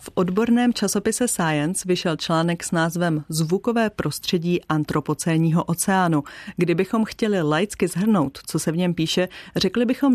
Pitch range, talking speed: 160-200 Hz, 135 wpm